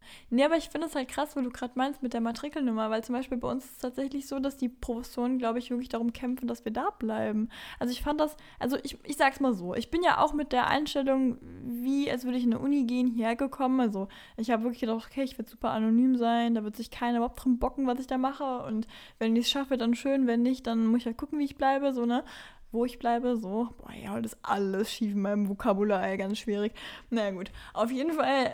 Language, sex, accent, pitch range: German, female, German, 235-275 Hz